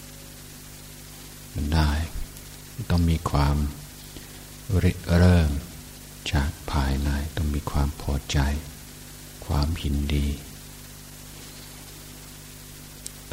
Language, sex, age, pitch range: Thai, male, 60-79, 70-80 Hz